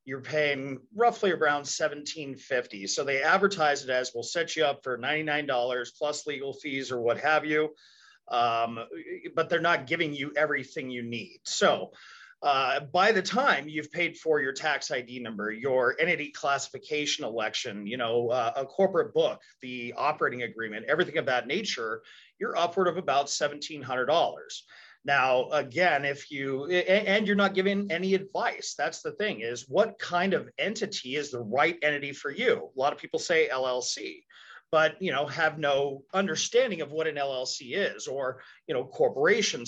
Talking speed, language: 170 wpm, English